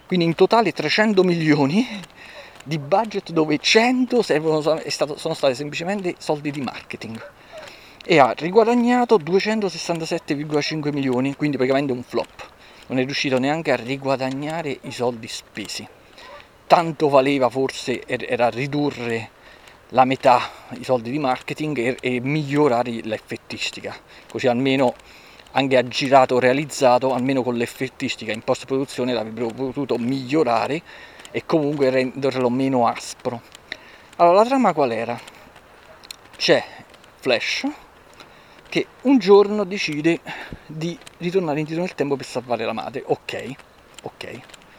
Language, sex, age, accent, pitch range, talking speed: Italian, male, 40-59, native, 130-165 Hz, 120 wpm